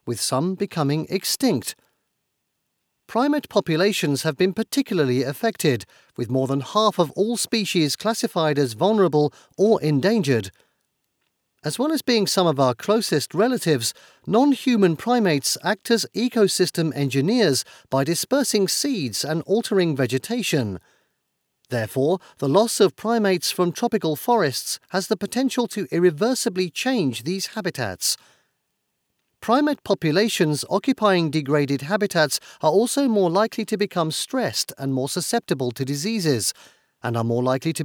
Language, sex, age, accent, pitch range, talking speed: English, male, 40-59, British, 140-220 Hz, 130 wpm